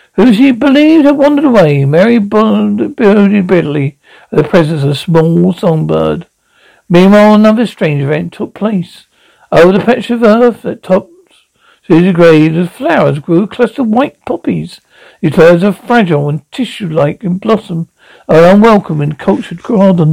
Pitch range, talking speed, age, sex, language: 160-210 Hz, 165 wpm, 60-79, male, English